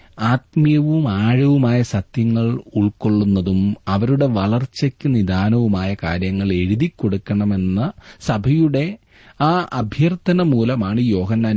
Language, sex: Malayalam, male